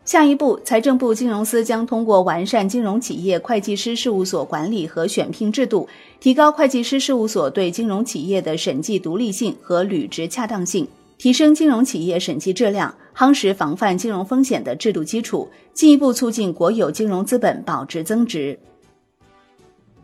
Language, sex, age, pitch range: Chinese, female, 30-49, 190-255 Hz